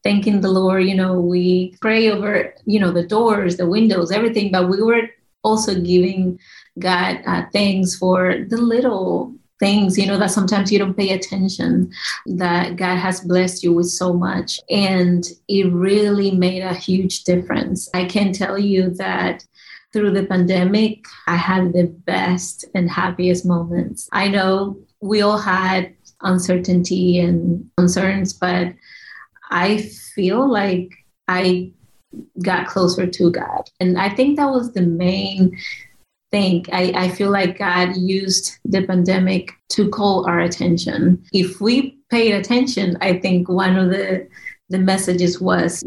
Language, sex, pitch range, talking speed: English, female, 180-200 Hz, 150 wpm